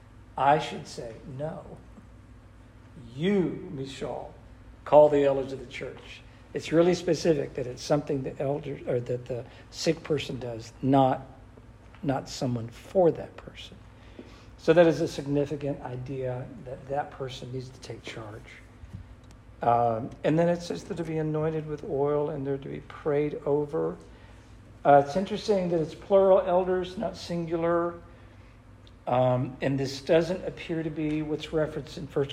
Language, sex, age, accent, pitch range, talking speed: English, male, 60-79, American, 115-165 Hz, 150 wpm